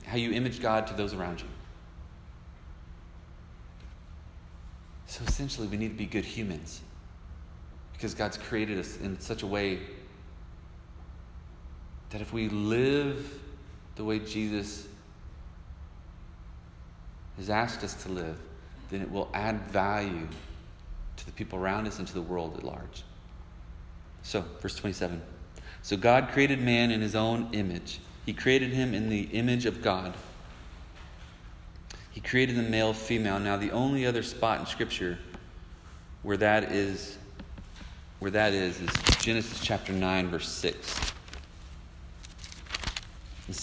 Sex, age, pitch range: male, 30-49, 85-110 Hz